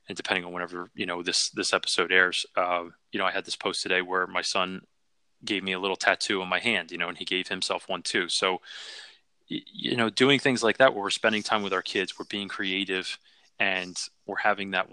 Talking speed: 235 wpm